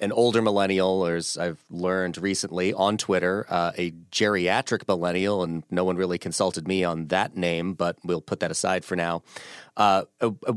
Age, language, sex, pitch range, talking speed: 30-49, English, male, 90-105 Hz, 175 wpm